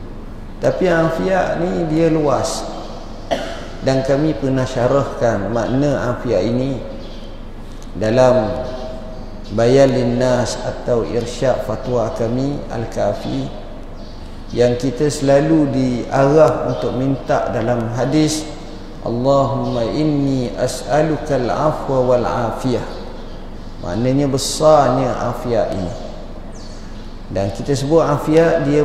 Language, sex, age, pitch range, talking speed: Malay, male, 50-69, 110-140 Hz, 90 wpm